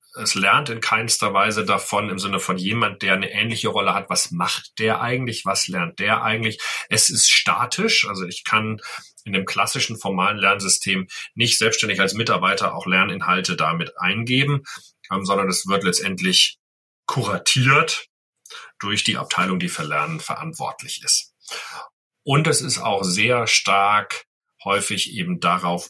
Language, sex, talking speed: German, male, 150 wpm